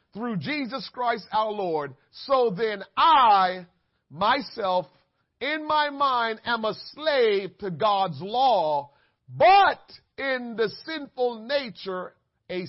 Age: 50-69